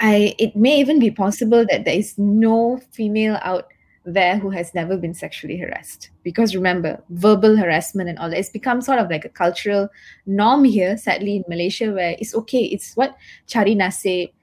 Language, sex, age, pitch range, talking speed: English, female, 20-39, 185-240 Hz, 185 wpm